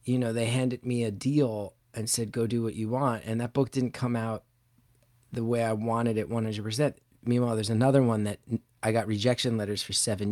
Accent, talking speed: American, 215 wpm